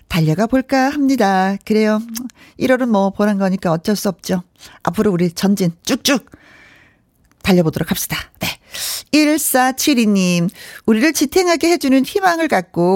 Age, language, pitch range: 40-59, Korean, 190-285 Hz